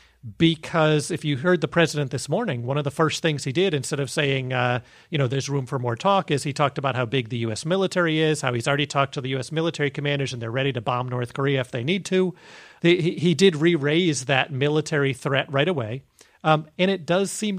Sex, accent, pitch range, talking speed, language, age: male, American, 130-155 Hz, 235 wpm, English, 40-59